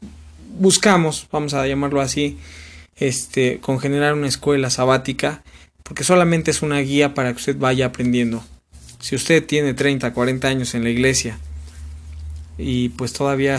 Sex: male